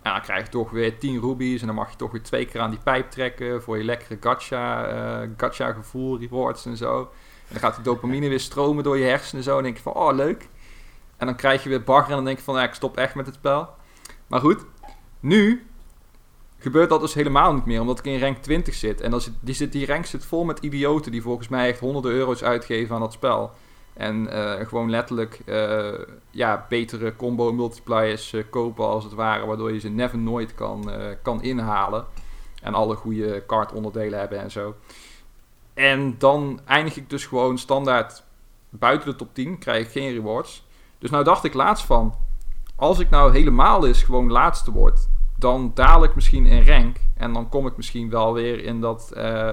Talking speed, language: 210 wpm, Dutch